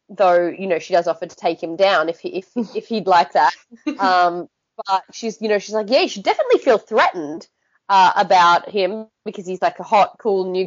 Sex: female